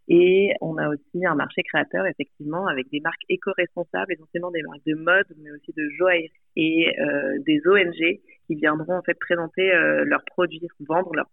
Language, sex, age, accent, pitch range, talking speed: French, female, 30-49, French, 150-180 Hz, 190 wpm